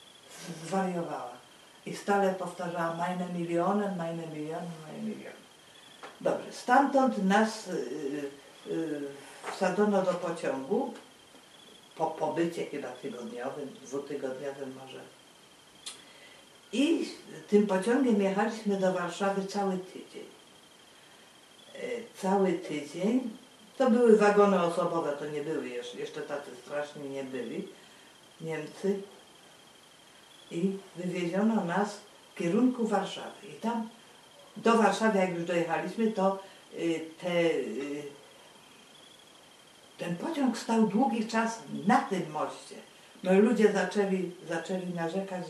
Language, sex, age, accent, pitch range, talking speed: Polish, female, 50-69, native, 165-205 Hz, 105 wpm